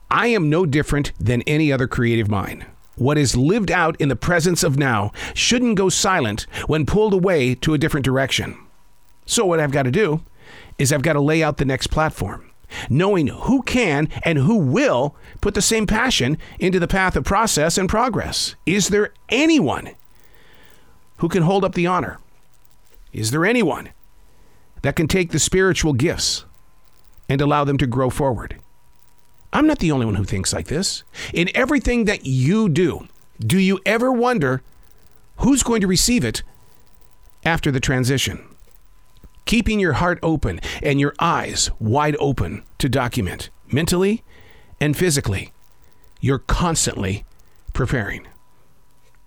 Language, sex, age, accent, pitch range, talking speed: English, male, 50-69, American, 110-180 Hz, 155 wpm